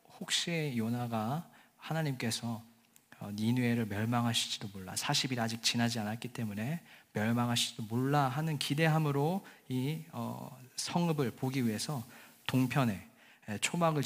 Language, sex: Korean, male